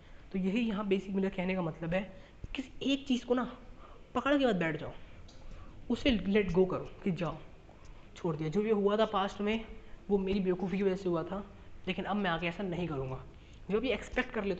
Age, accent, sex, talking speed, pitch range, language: 20-39, native, female, 220 wpm, 165-210 Hz, Hindi